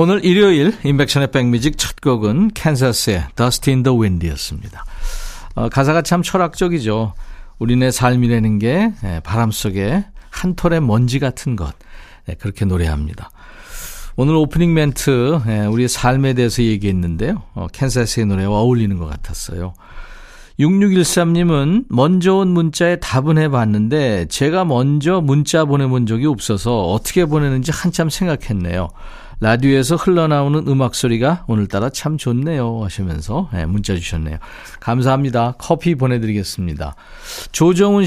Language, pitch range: Korean, 110-160 Hz